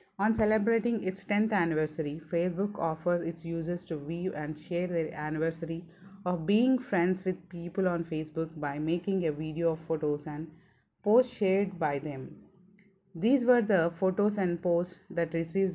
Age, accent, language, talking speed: 30-49, Indian, English, 155 wpm